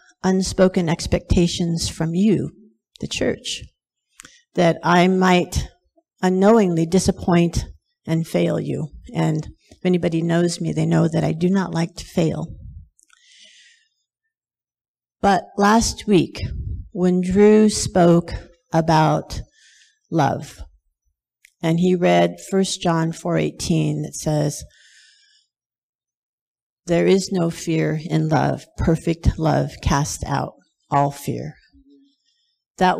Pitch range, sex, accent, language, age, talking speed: 160-205 Hz, female, American, English, 50-69, 105 wpm